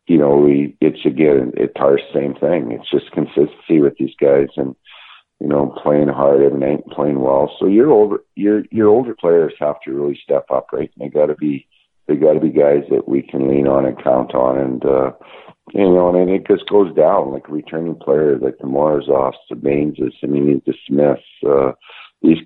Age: 50-69